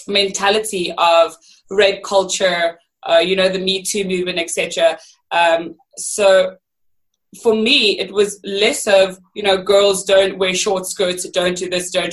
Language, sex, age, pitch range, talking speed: English, female, 20-39, 175-205 Hz, 155 wpm